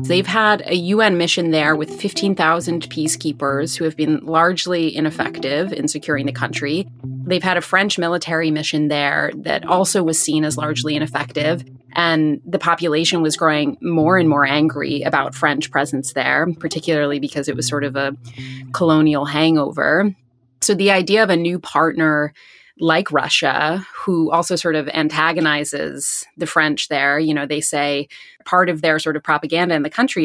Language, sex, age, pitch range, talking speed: English, female, 30-49, 150-175 Hz, 165 wpm